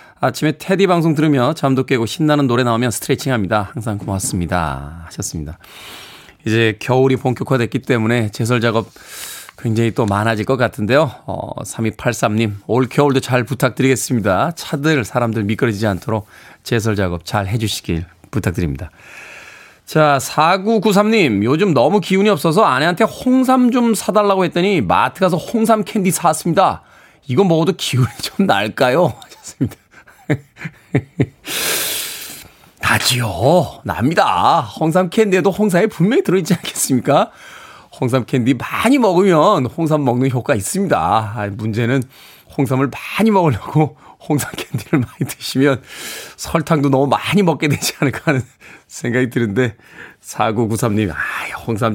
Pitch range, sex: 115-165 Hz, male